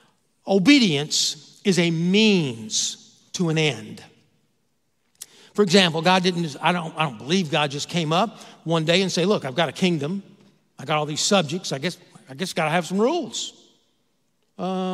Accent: American